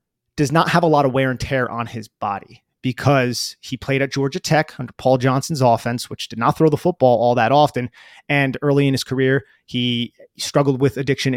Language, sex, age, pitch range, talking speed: English, male, 30-49, 125-155 Hz, 210 wpm